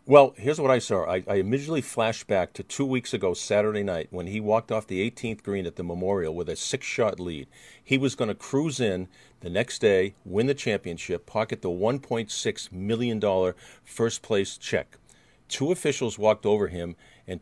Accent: American